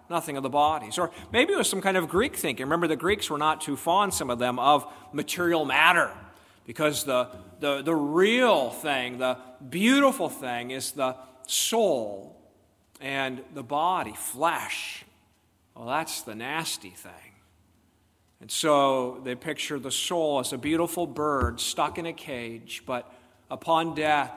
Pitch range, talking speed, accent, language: 125-165 Hz, 160 wpm, American, English